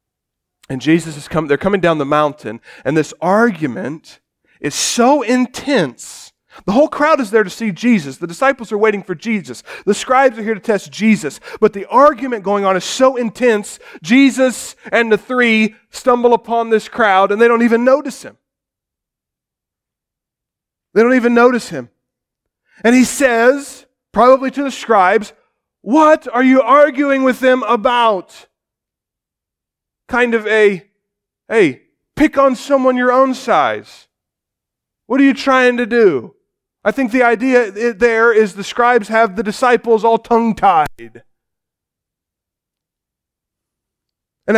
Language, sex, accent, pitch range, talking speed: English, male, American, 195-250 Hz, 145 wpm